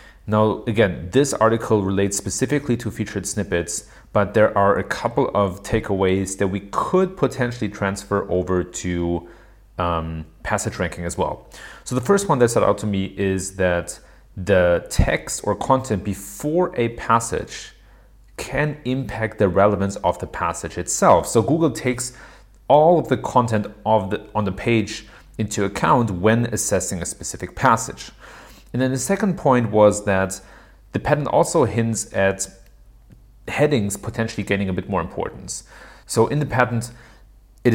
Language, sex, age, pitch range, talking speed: English, male, 30-49, 95-120 Hz, 150 wpm